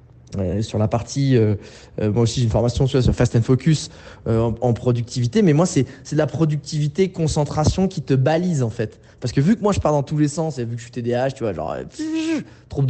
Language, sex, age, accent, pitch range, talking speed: French, male, 20-39, French, 115-150 Hz, 260 wpm